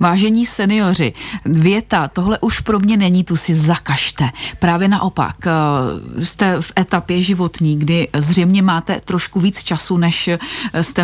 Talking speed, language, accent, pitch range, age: 135 wpm, Czech, native, 165-195 Hz, 30-49